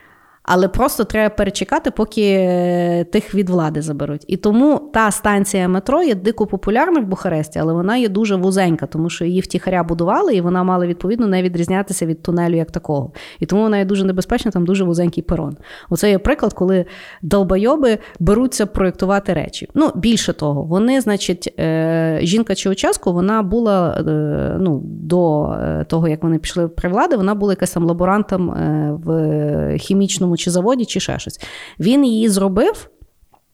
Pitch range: 175-220 Hz